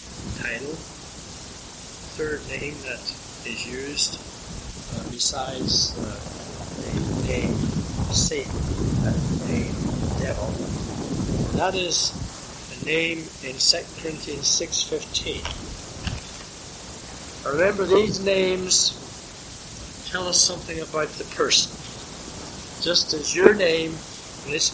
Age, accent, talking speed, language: 60-79, American, 90 wpm, English